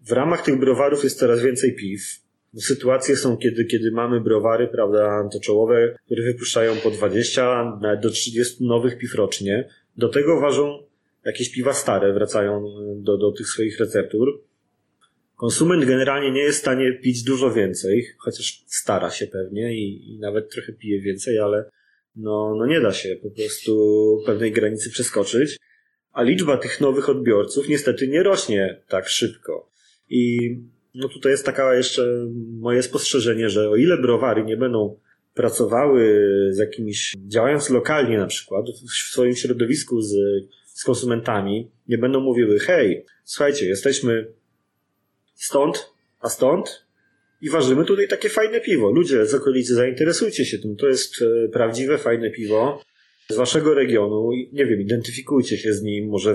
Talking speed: 150 wpm